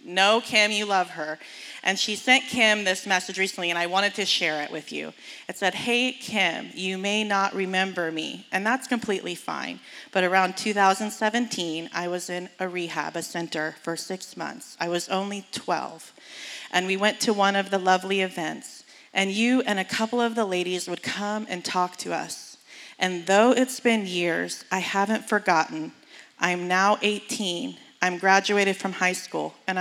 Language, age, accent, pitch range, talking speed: English, 30-49, American, 180-210 Hz, 180 wpm